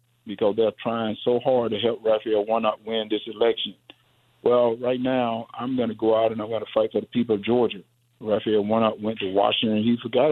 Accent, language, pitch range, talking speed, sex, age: American, English, 120-145 Hz, 220 wpm, male, 50-69